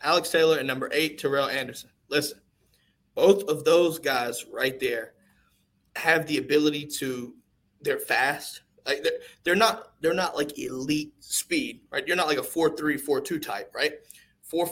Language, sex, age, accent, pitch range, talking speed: English, male, 20-39, American, 140-235 Hz, 165 wpm